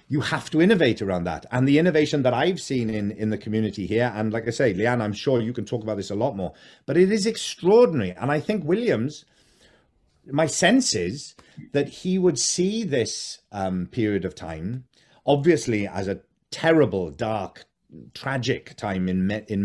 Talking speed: 185 wpm